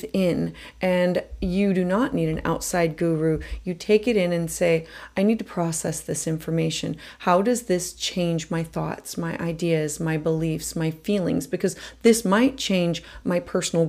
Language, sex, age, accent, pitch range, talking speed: English, female, 30-49, American, 165-200 Hz, 170 wpm